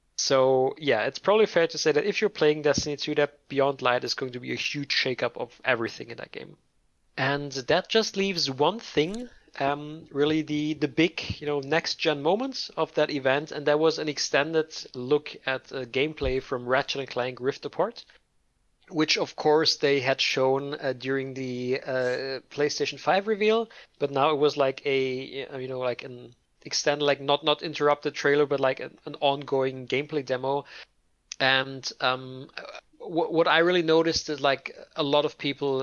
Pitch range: 130-155 Hz